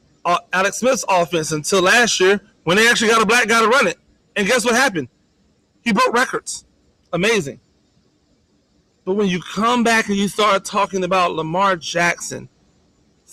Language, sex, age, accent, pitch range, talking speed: English, male, 30-49, American, 150-195 Hz, 170 wpm